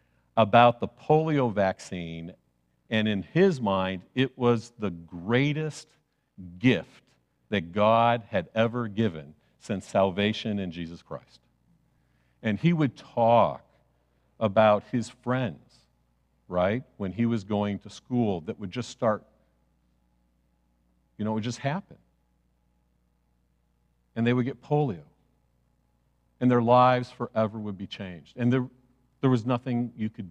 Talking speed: 130 wpm